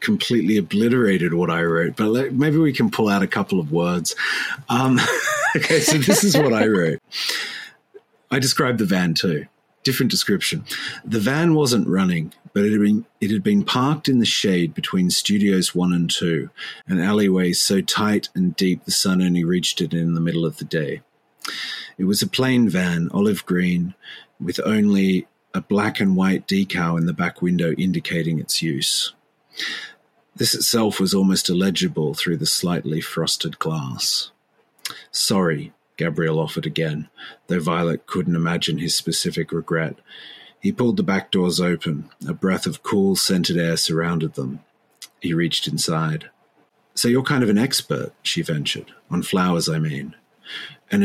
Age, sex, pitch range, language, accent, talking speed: 40-59, male, 85-125 Hz, English, Australian, 165 wpm